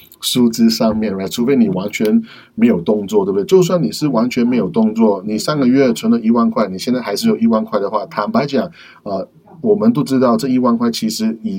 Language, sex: Chinese, male